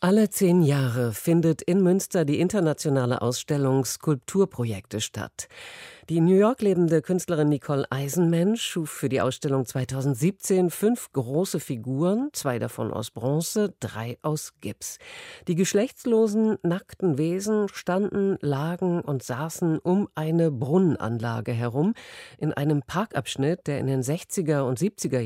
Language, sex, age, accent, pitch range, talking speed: German, female, 50-69, German, 130-175 Hz, 130 wpm